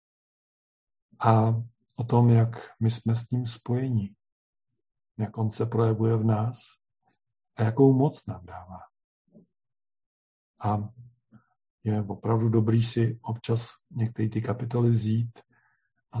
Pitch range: 105-120 Hz